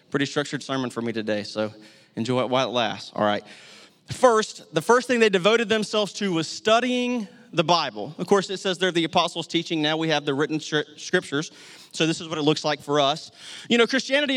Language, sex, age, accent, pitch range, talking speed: English, male, 30-49, American, 160-225 Hz, 215 wpm